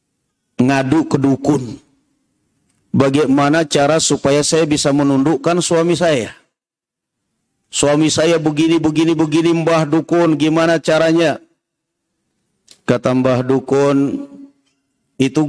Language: Indonesian